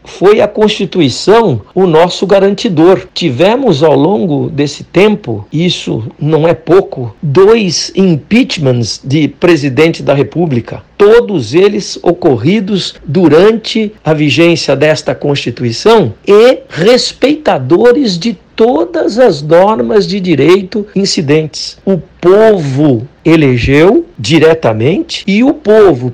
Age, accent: 60-79, Brazilian